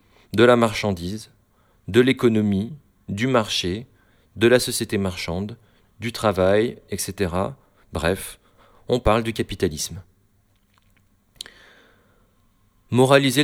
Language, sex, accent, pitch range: French, male, French, 95-115 Hz